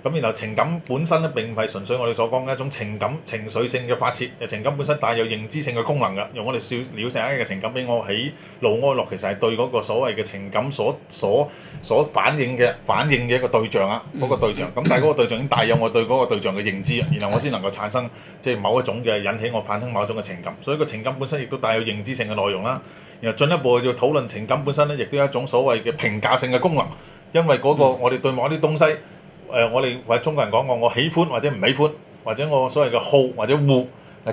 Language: Chinese